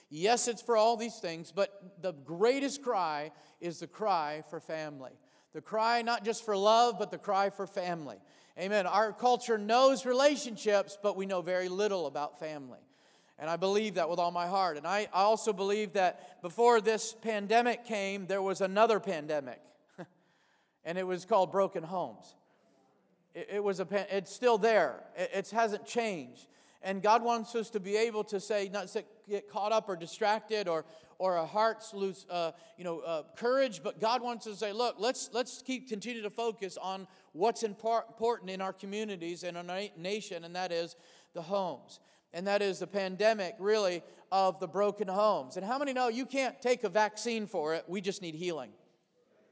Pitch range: 180-225 Hz